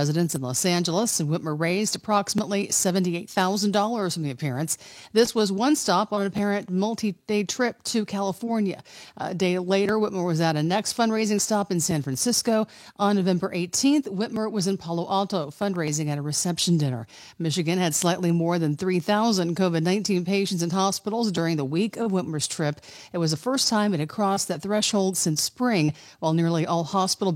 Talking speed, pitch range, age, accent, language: 180 wpm, 165-210 Hz, 50-69, American, English